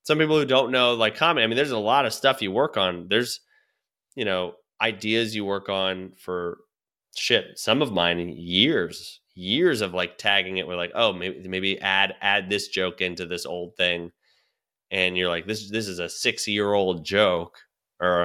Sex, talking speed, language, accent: male, 195 wpm, English, American